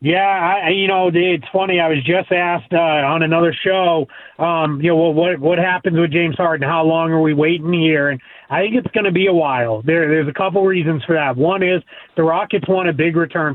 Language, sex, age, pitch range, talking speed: English, male, 30-49, 160-185 Hz, 240 wpm